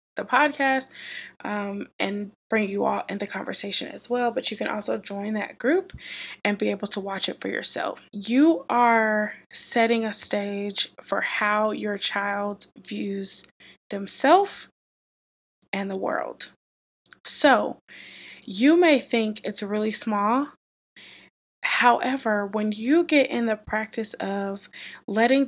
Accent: American